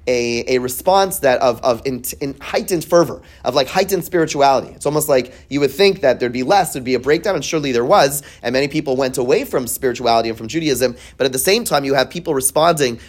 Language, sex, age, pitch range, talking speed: English, male, 30-49, 125-175 Hz, 235 wpm